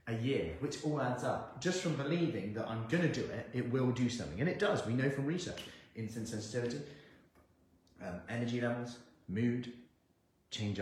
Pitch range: 95-130 Hz